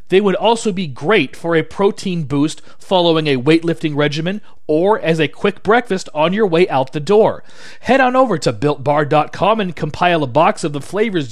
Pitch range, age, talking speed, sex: 160-210 Hz, 40-59, 190 wpm, male